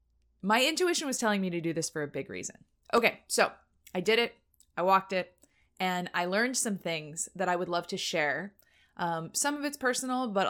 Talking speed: 210 wpm